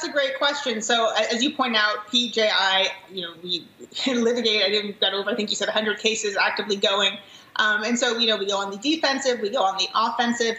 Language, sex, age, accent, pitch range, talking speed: English, female, 30-49, American, 205-245 Hz, 220 wpm